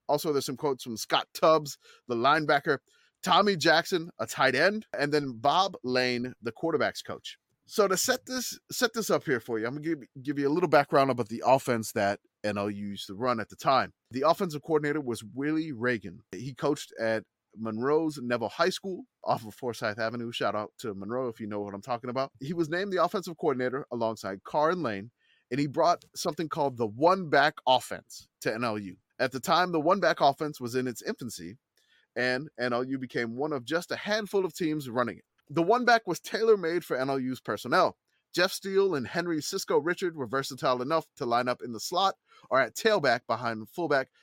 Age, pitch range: 20-39, 120-175 Hz